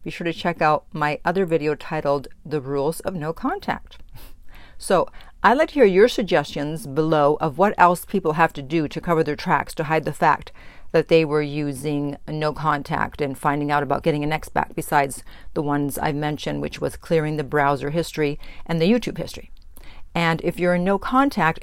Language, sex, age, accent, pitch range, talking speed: English, female, 50-69, American, 150-175 Hz, 205 wpm